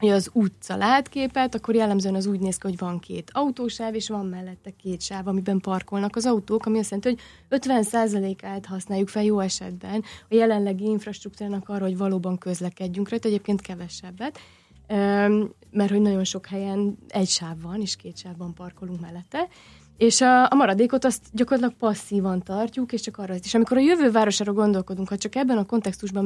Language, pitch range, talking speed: Hungarian, 190-230 Hz, 175 wpm